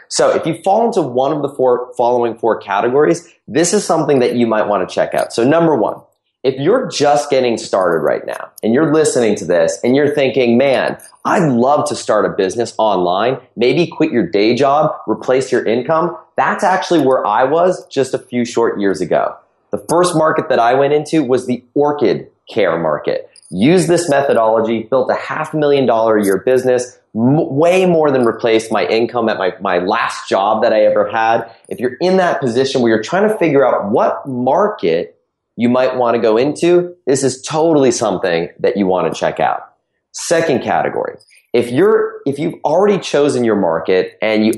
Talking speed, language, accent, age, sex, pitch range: 200 wpm, English, American, 30-49, male, 120-170 Hz